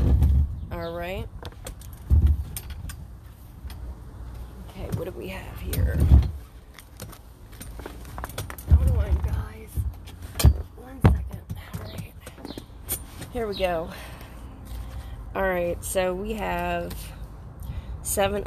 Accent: American